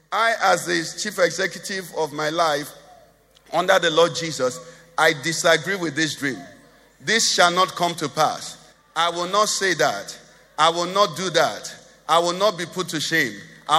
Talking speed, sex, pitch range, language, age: 180 wpm, male, 175-265 Hz, English, 50-69